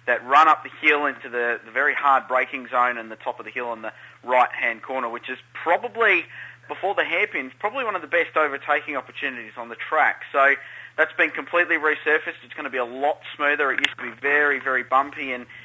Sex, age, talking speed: male, 30-49, 220 wpm